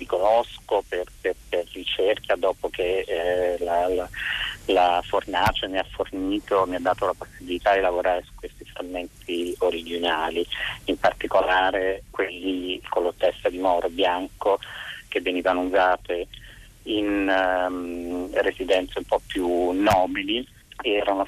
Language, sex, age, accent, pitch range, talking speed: Italian, male, 30-49, native, 90-100 Hz, 135 wpm